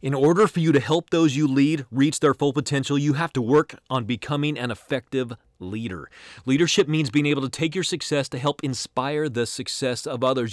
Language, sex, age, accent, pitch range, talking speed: English, male, 30-49, American, 110-135 Hz, 210 wpm